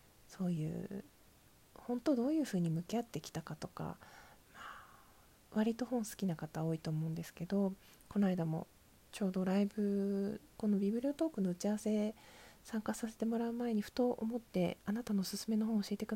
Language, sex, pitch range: Japanese, female, 185-235 Hz